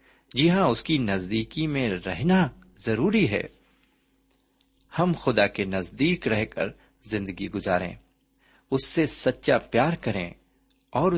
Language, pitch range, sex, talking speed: Urdu, 100-145 Hz, male, 125 wpm